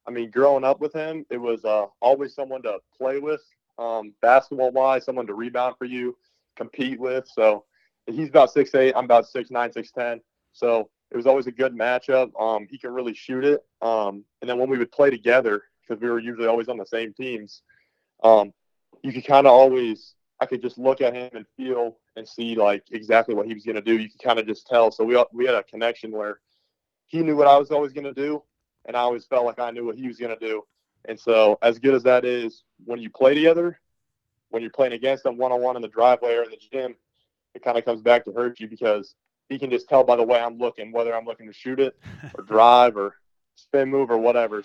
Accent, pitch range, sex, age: American, 115-130 Hz, male, 20-39